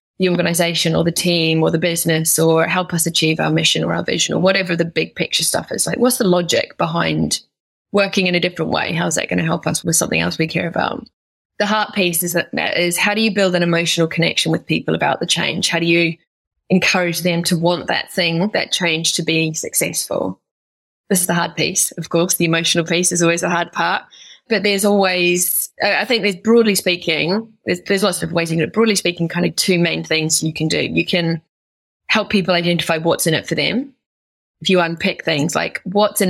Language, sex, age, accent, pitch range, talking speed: English, female, 20-39, British, 165-190 Hz, 225 wpm